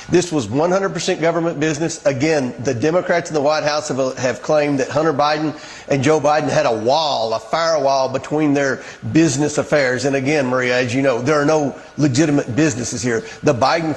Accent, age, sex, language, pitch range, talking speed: American, 40-59, male, English, 145-195 Hz, 190 wpm